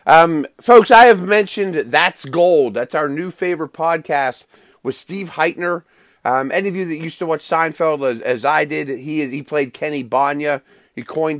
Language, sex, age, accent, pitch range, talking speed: English, male, 30-49, American, 130-175 Hz, 185 wpm